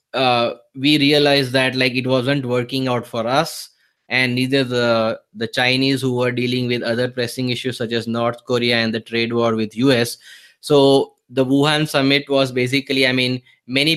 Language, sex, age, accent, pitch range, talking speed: English, male, 20-39, Indian, 120-140 Hz, 180 wpm